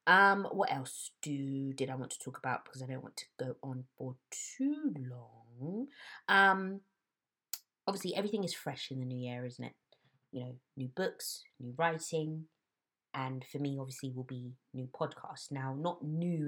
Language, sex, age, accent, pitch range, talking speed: English, female, 20-39, British, 130-165 Hz, 175 wpm